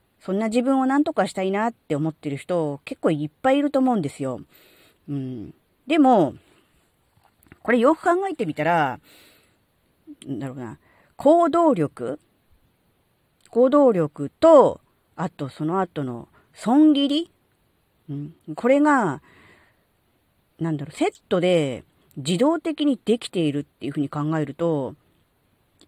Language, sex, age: Japanese, female, 40-59